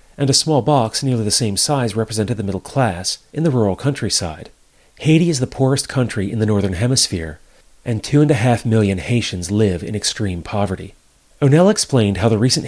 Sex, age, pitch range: male, 40-59, 100-130 Hz